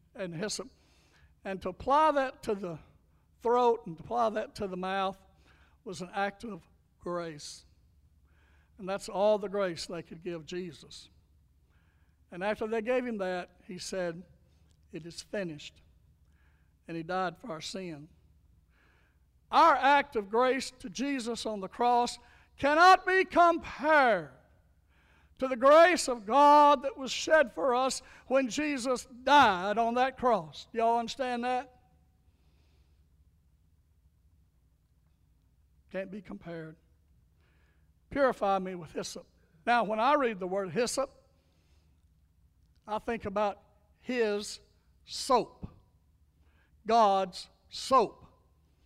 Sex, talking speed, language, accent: male, 125 wpm, English, American